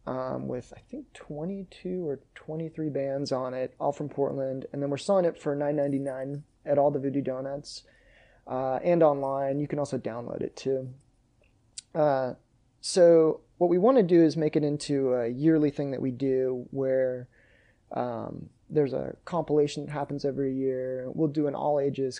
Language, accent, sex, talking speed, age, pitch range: English, American, male, 175 wpm, 20-39, 130-145 Hz